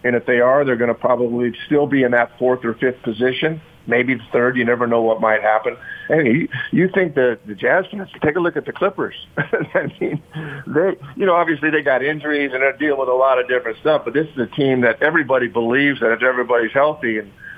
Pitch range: 120-140 Hz